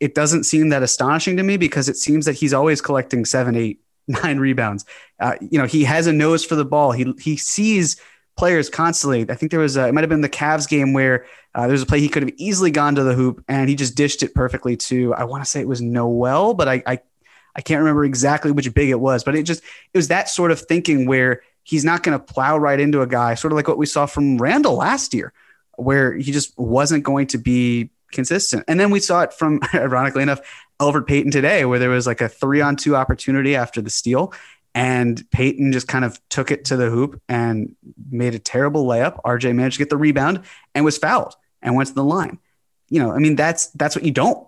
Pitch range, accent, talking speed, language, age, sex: 125-155 Hz, American, 245 wpm, English, 20-39, male